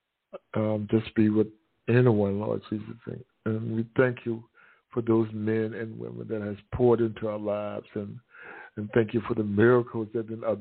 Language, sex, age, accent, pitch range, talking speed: English, male, 60-79, American, 105-115 Hz, 175 wpm